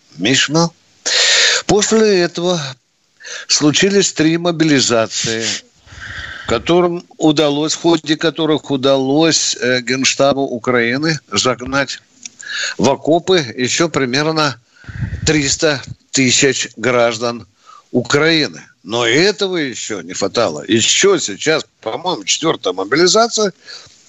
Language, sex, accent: Russian, male, native